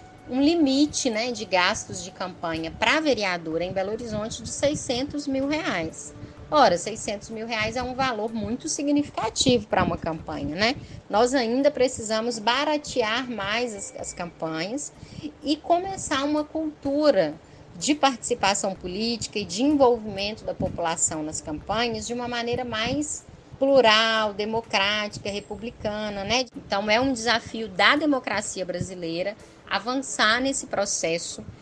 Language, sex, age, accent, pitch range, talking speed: Portuguese, female, 10-29, Brazilian, 180-250 Hz, 135 wpm